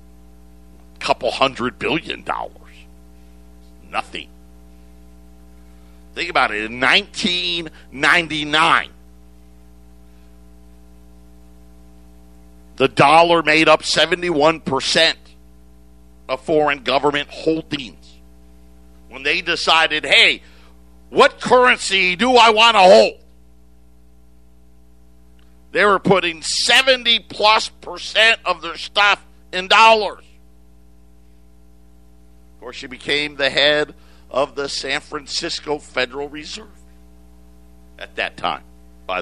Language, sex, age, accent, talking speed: English, male, 50-69, American, 85 wpm